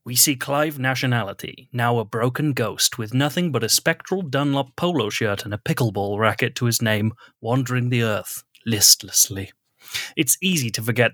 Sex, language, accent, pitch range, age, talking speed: male, English, British, 110-140 Hz, 30-49, 165 wpm